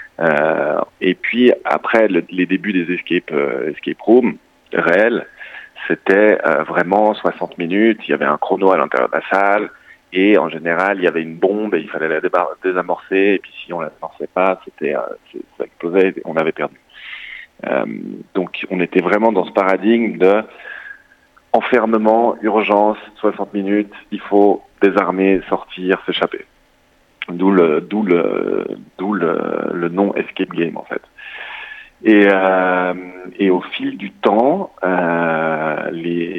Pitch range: 90-105 Hz